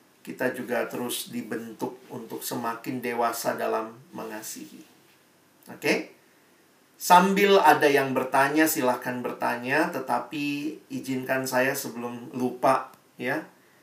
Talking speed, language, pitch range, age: 100 wpm, Indonesian, 120-150 Hz, 40-59